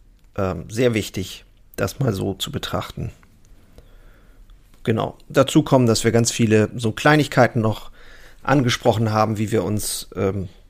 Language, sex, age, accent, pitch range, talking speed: German, male, 40-59, German, 100-120 Hz, 130 wpm